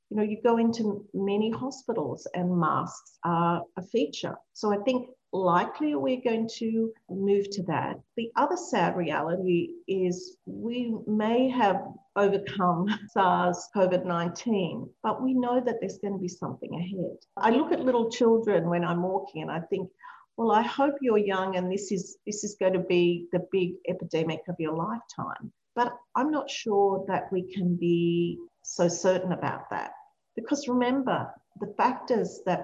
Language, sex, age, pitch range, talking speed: English, female, 50-69, 175-225 Hz, 165 wpm